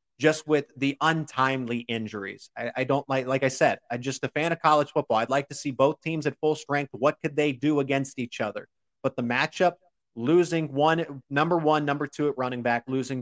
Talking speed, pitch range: 220 wpm, 125-150 Hz